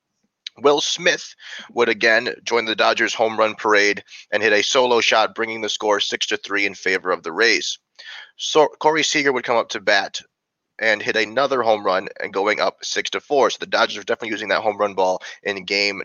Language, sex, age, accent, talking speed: English, male, 30-49, American, 215 wpm